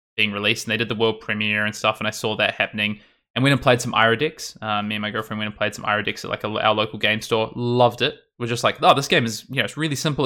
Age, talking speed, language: 20-39, 310 wpm, English